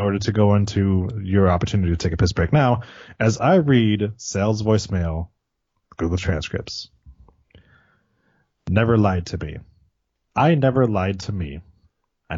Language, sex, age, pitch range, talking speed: English, male, 20-39, 95-125 Hz, 140 wpm